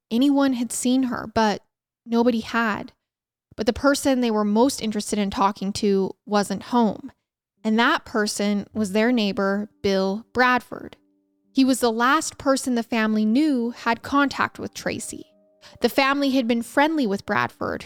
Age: 10-29